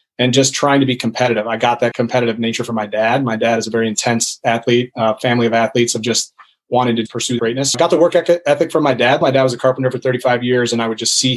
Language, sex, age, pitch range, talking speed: English, male, 30-49, 120-130 Hz, 275 wpm